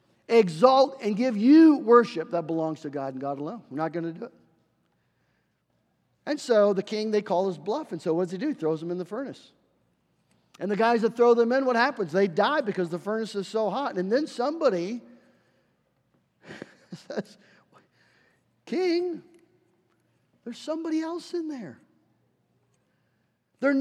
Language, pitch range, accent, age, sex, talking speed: English, 175-265 Hz, American, 50-69, male, 165 wpm